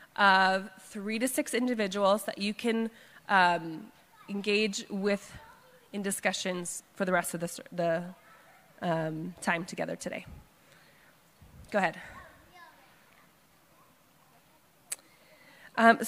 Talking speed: 95 wpm